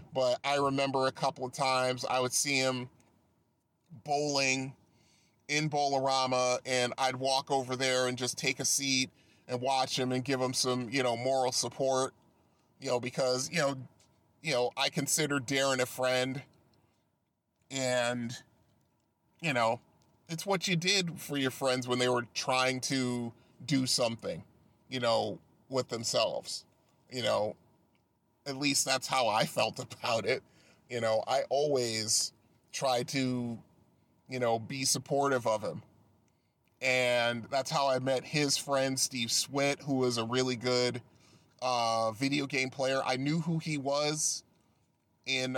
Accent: American